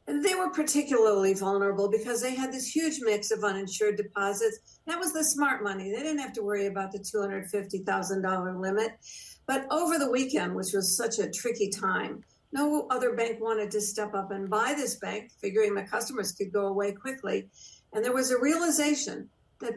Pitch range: 205-260 Hz